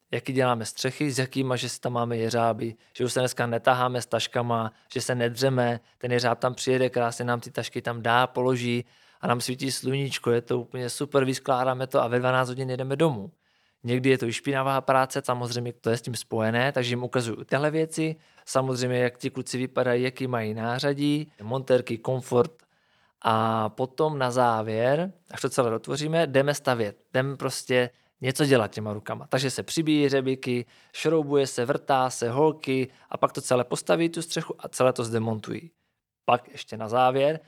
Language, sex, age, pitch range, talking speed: Czech, male, 20-39, 120-135 Hz, 185 wpm